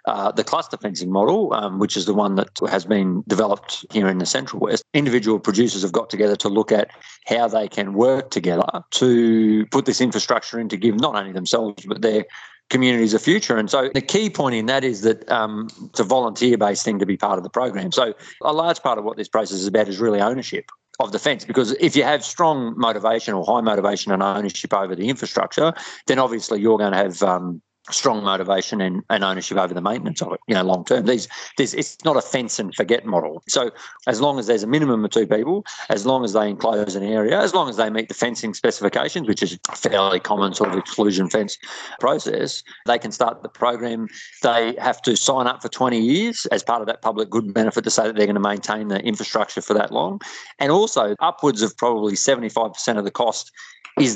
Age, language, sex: 50-69, English, male